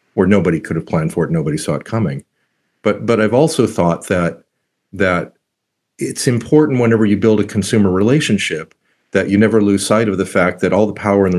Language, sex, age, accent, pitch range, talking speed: English, male, 40-59, American, 90-110 Hz, 210 wpm